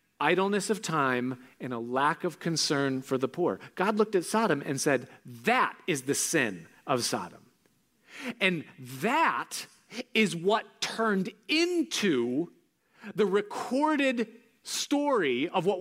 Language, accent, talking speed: English, American, 130 wpm